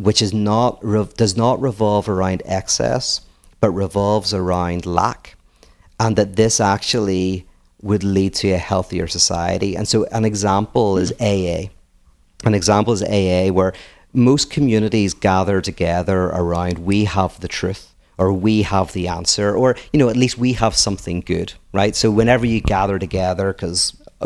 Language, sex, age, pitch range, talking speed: English, male, 40-59, 95-110 Hz, 155 wpm